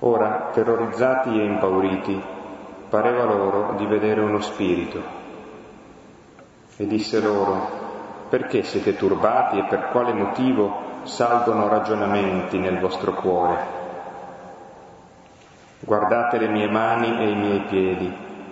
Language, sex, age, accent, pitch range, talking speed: Italian, male, 30-49, native, 95-110 Hz, 105 wpm